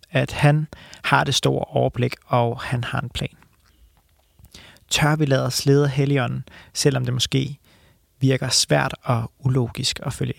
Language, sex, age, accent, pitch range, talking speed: English, male, 30-49, Danish, 115-145 Hz, 150 wpm